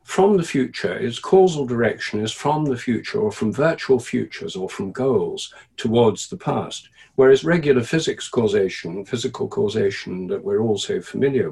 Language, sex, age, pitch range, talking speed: English, male, 50-69, 120-185 Hz, 155 wpm